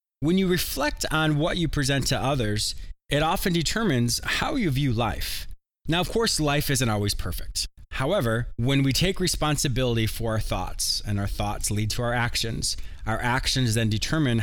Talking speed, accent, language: 175 wpm, American, English